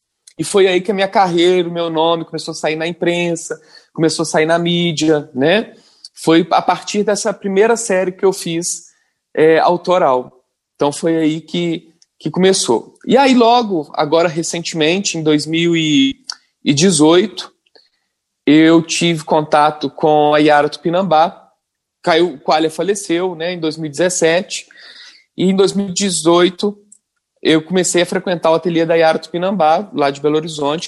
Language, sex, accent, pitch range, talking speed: Portuguese, male, Brazilian, 155-190 Hz, 140 wpm